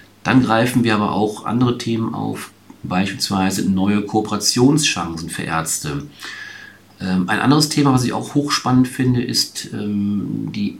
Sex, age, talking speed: male, 40-59, 130 wpm